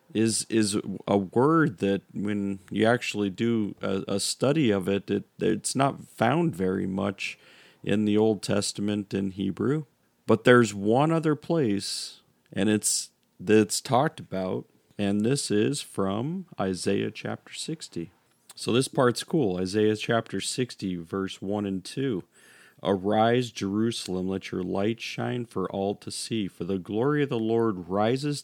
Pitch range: 95-120 Hz